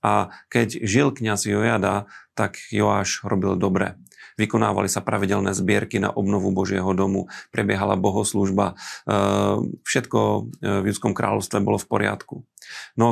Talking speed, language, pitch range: 125 wpm, Slovak, 100-110 Hz